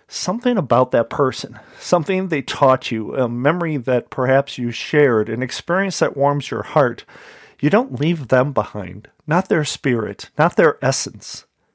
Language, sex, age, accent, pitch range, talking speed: English, male, 40-59, American, 115-150 Hz, 160 wpm